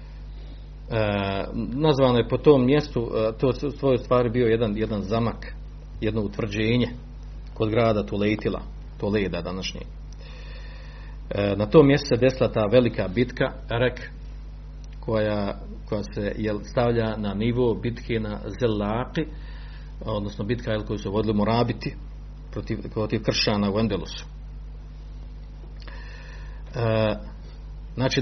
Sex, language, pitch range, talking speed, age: male, Croatian, 100-130 Hz, 110 wpm, 50-69